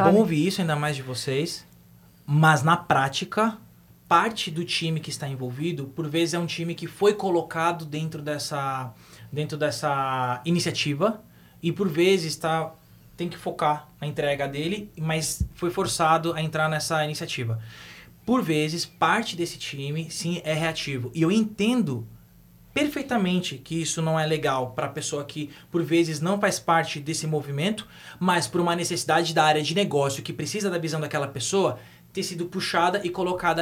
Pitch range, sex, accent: 145-175 Hz, male, Brazilian